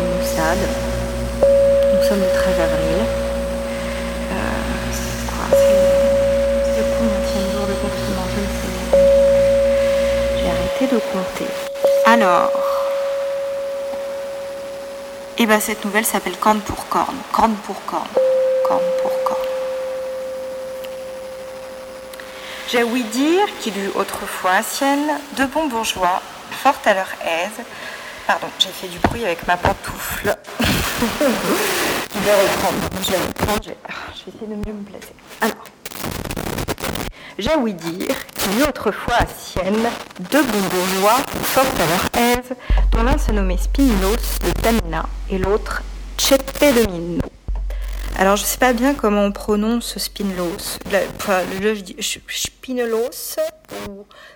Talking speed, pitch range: 130 wpm, 190-275 Hz